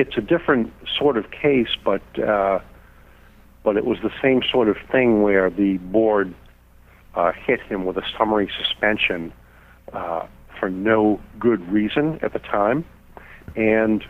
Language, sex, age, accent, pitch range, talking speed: English, male, 60-79, American, 90-130 Hz, 150 wpm